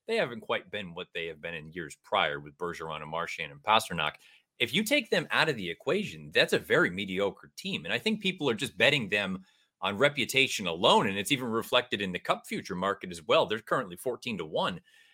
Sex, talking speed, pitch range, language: male, 225 wpm, 105-150 Hz, English